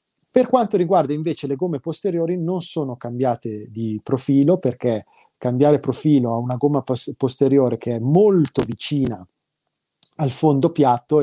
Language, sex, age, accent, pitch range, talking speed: Italian, male, 30-49, native, 120-155 Hz, 140 wpm